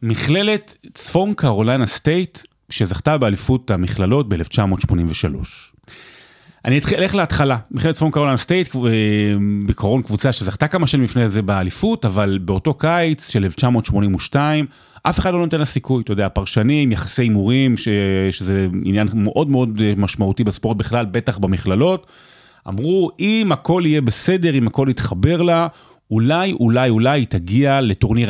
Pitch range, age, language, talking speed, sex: 105-150 Hz, 30-49, Hebrew, 135 wpm, male